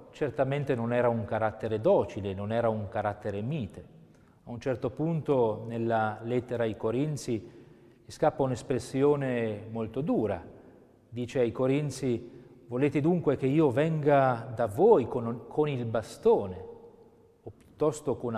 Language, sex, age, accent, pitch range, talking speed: Italian, male, 40-59, native, 115-145 Hz, 130 wpm